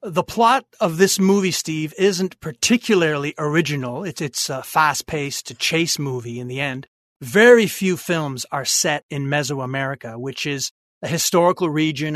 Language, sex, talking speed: English, male, 150 wpm